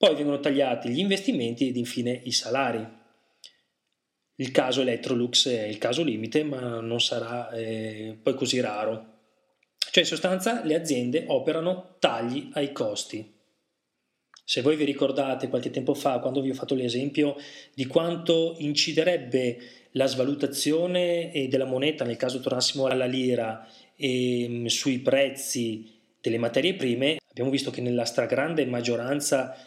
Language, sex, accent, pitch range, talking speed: Italian, male, native, 120-150 Hz, 135 wpm